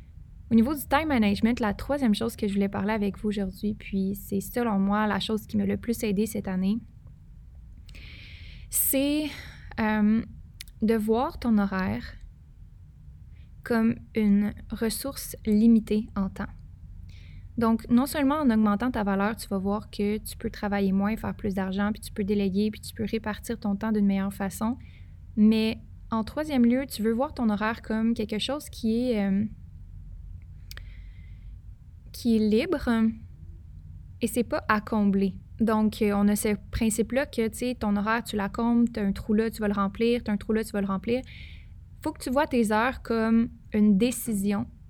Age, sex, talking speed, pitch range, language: 20-39, female, 180 wpm, 195-230 Hz, French